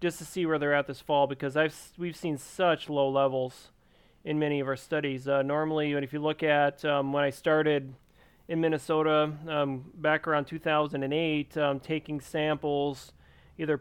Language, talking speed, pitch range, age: English, 175 wpm, 145-160 Hz, 30-49